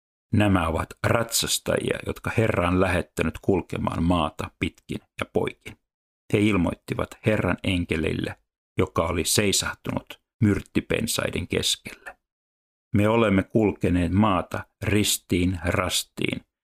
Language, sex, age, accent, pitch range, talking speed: Finnish, male, 60-79, native, 85-105 Hz, 95 wpm